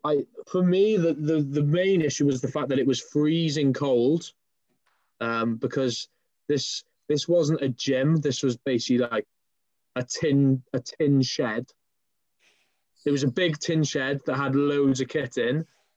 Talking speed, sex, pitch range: 165 wpm, male, 130-155 Hz